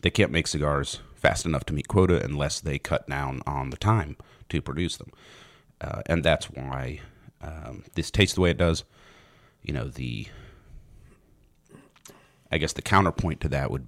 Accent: American